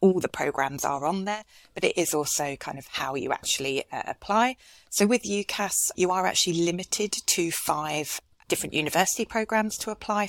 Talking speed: 180 wpm